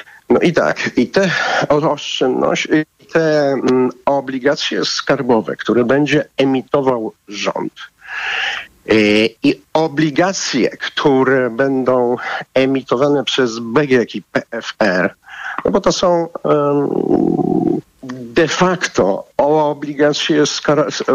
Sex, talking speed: male, 95 wpm